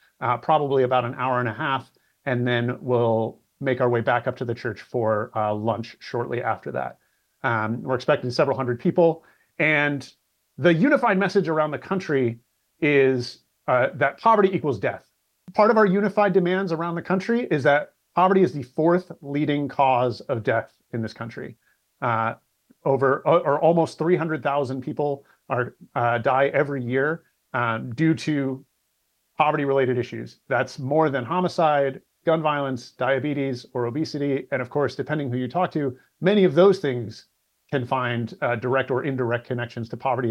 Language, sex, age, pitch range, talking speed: English, male, 30-49, 125-160 Hz, 170 wpm